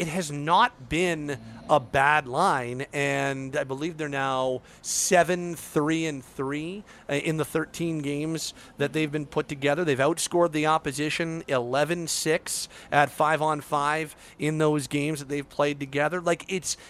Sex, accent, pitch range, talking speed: male, American, 140-170 Hz, 155 wpm